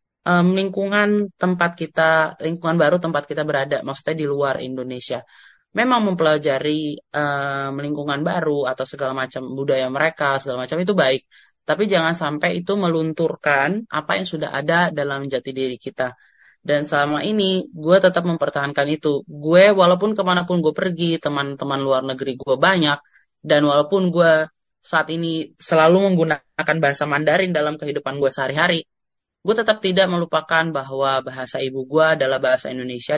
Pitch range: 140-175 Hz